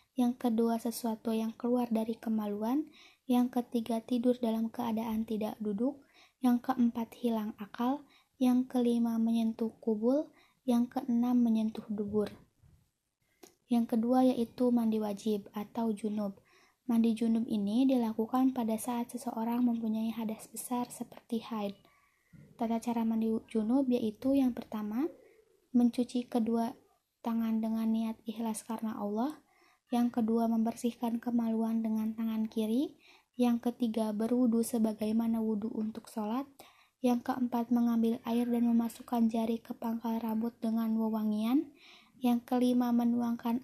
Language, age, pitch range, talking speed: Indonesian, 20-39, 225-245 Hz, 120 wpm